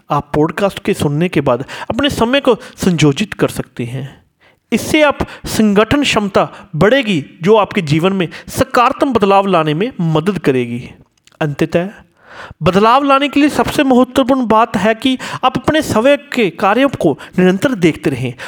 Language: Hindi